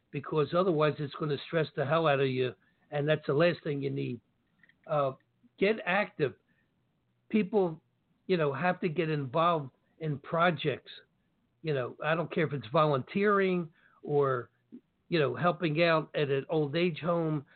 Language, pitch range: English, 145-175 Hz